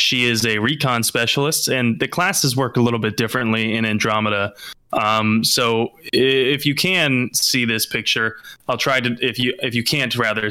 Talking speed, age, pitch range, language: 185 wpm, 20-39, 110-130 Hz, English